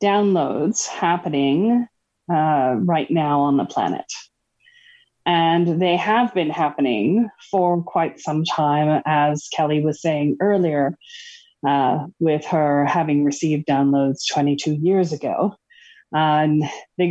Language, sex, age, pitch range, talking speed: English, female, 30-49, 155-205 Hz, 120 wpm